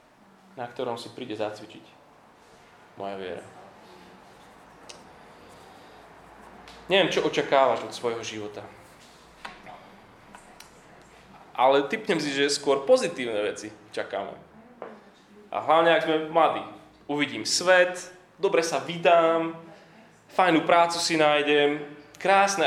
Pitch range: 140-175 Hz